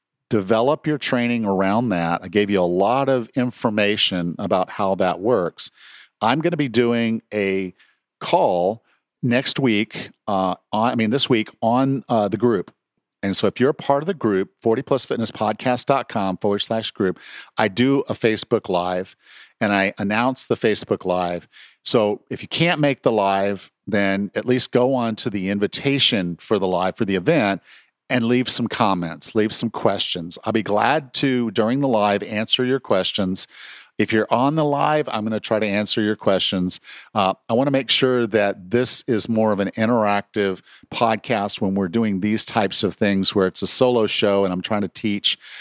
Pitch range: 95-120 Hz